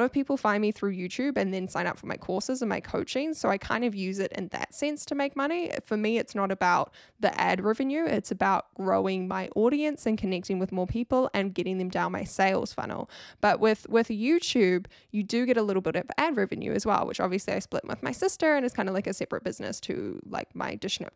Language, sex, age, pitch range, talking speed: English, female, 10-29, 195-275 Hz, 245 wpm